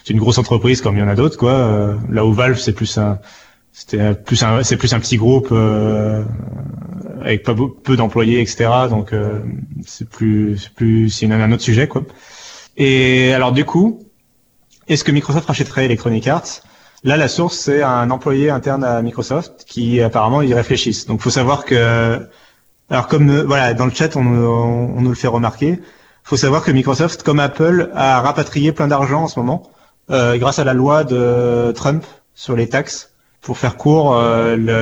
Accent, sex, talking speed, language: French, male, 195 wpm, French